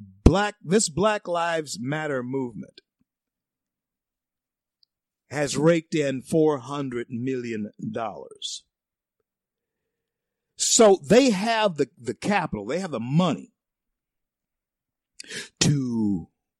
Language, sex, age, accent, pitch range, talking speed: English, male, 50-69, American, 115-165 Hz, 80 wpm